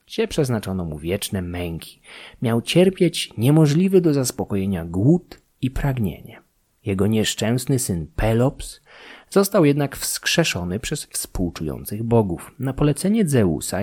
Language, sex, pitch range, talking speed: Polish, male, 100-150 Hz, 115 wpm